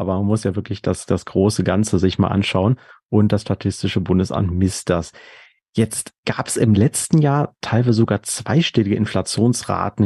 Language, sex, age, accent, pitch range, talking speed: German, male, 30-49, German, 100-125 Hz, 165 wpm